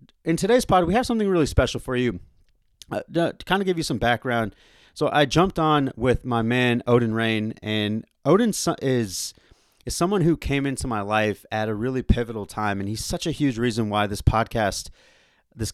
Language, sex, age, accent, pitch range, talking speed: English, male, 30-49, American, 105-135 Hz, 200 wpm